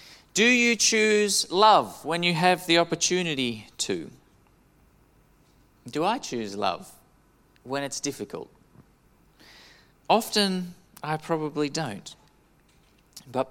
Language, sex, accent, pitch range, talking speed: English, male, Australian, 125-170 Hz, 100 wpm